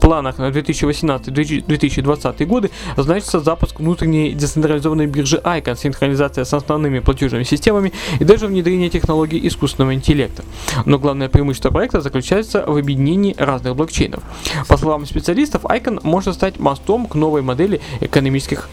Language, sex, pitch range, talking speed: Russian, male, 145-175 Hz, 135 wpm